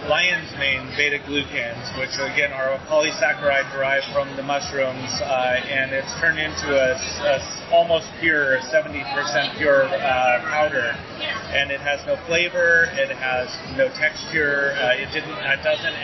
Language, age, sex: English, 30-49, male